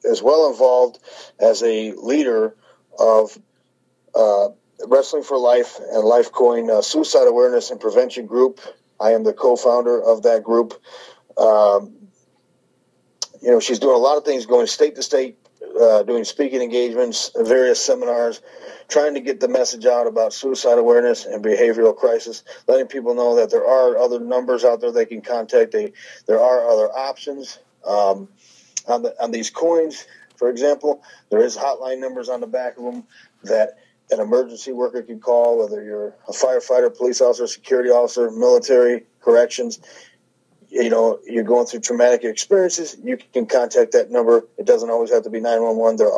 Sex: male